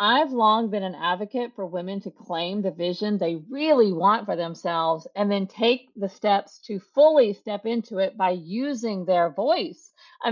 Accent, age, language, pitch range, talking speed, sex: American, 40-59, English, 180-245 Hz, 180 wpm, female